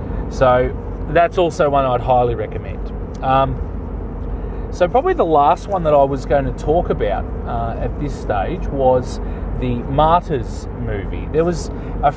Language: English